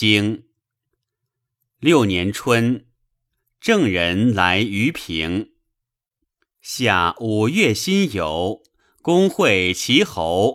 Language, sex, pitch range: Chinese, male, 105-145 Hz